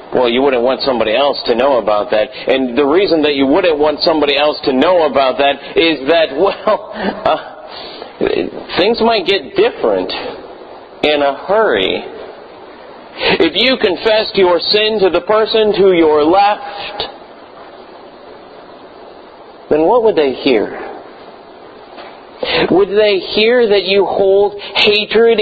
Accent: American